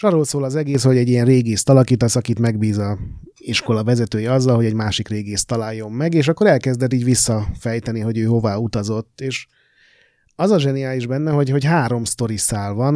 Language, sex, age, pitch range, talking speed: Hungarian, male, 30-49, 110-140 Hz, 190 wpm